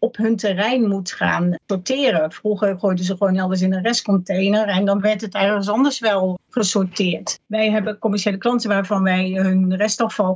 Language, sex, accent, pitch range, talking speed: Dutch, female, Dutch, 190-225 Hz, 175 wpm